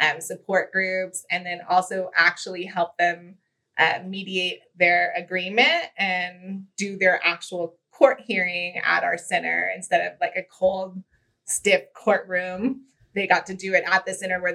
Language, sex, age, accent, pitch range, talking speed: English, female, 20-39, American, 175-230 Hz, 155 wpm